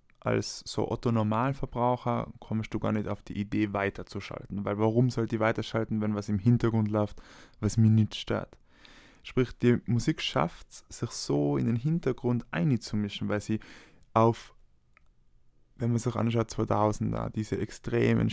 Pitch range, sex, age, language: 105-120 Hz, male, 20-39, German